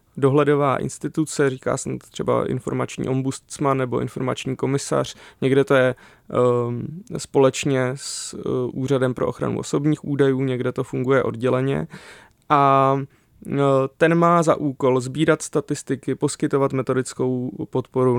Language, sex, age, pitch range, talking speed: Czech, male, 20-39, 130-145 Hz, 110 wpm